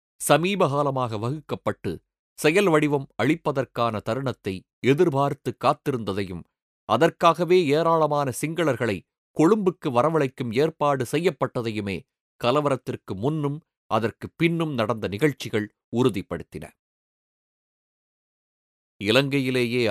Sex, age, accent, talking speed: male, 30-49, native, 70 wpm